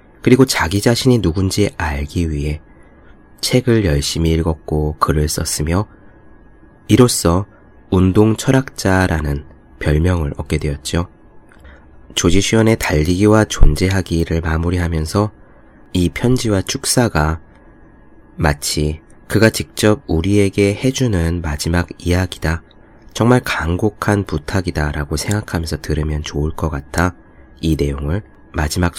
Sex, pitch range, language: male, 80-105 Hz, Korean